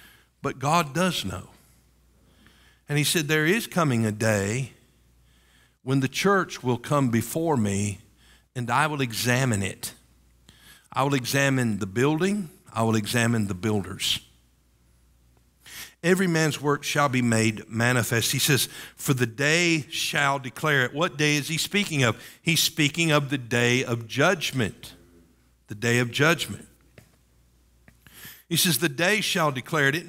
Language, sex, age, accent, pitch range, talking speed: English, male, 50-69, American, 110-165 Hz, 150 wpm